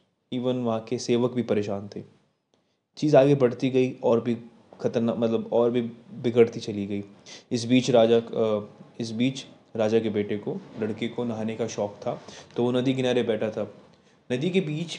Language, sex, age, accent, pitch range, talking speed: Hindi, male, 20-39, native, 115-135 Hz, 175 wpm